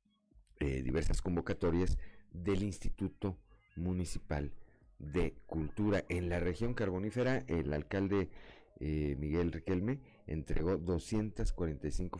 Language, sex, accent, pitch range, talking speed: Spanish, male, Mexican, 80-100 Hz, 95 wpm